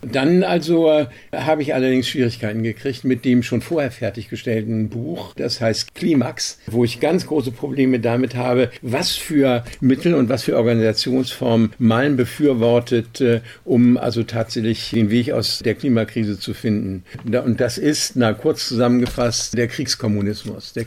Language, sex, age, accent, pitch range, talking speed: German, male, 60-79, German, 115-130 Hz, 150 wpm